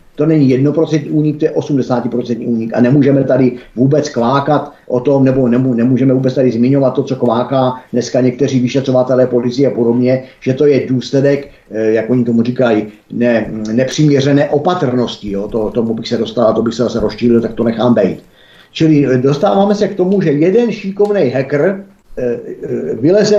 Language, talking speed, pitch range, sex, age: Czech, 165 wpm, 125-160 Hz, male, 50-69